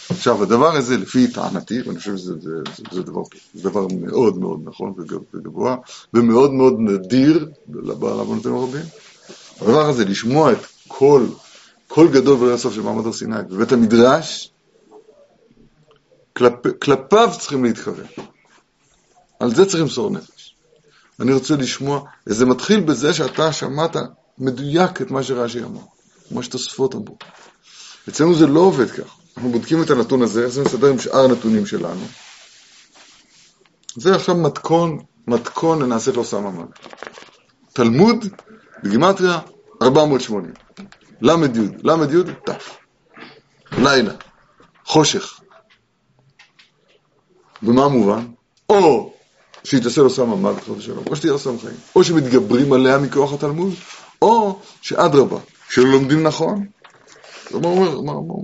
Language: Hebrew